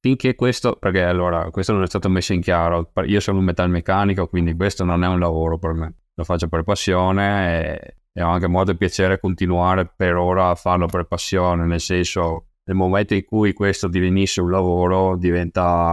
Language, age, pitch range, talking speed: Italian, 20-39, 85-95 Hz, 190 wpm